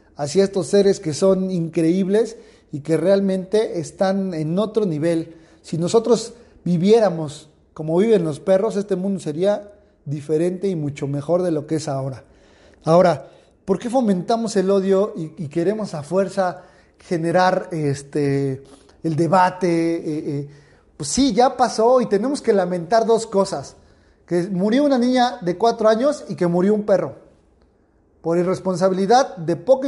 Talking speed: 145 wpm